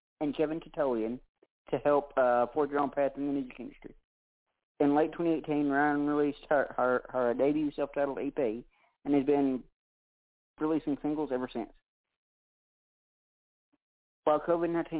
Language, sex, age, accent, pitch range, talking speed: English, male, 40-59, American, 125-150 Hz, 135 wpm